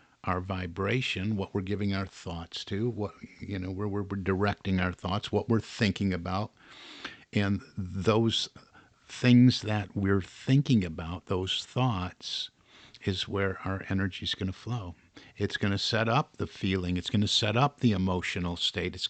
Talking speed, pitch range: 165 wpm, 95-125 Hz